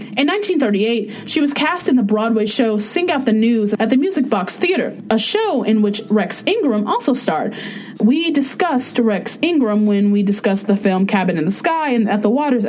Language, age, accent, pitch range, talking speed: English, 20-39, American, 205-260 Hz, 205 wpm